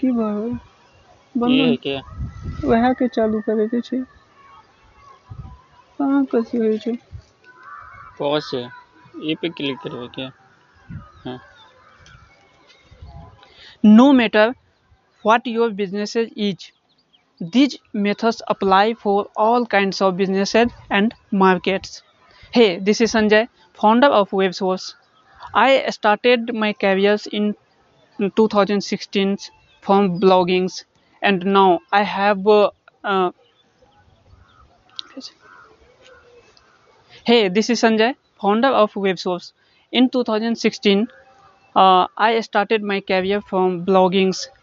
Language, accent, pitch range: English, Indian, 190-230 Hz